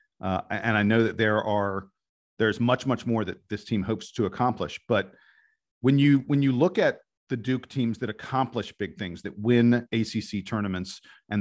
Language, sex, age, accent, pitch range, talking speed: English, male, 40-59, American, 105-135 Hz, 190 wpm